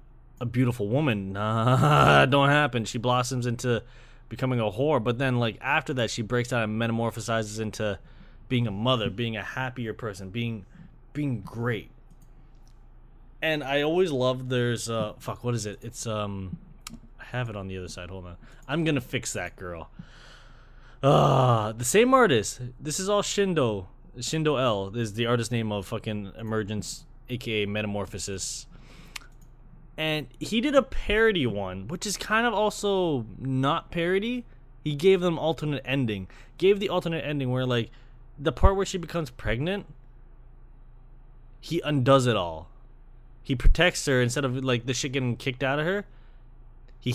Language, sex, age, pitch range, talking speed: English, male, 20-39, 115-140 Hz, 160 wpm